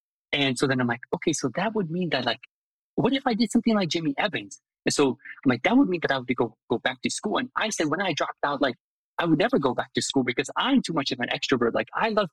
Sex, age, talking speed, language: male, 20-39, 290 wpm, English